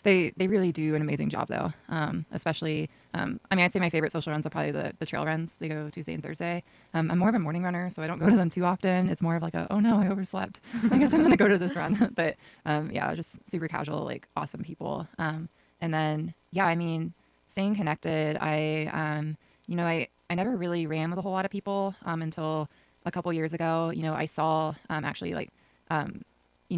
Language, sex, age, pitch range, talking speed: English, female, 20-39, 155-185 Hz, 245 wpm